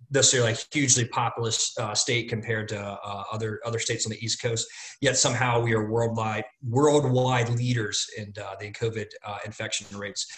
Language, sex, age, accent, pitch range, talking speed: English, male, 30-49, American, 110-125 Hz, 180 wpm